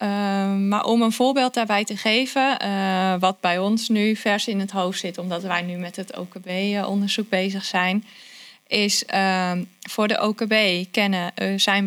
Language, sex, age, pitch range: Dutch, female, 20-39, 185-230 Hz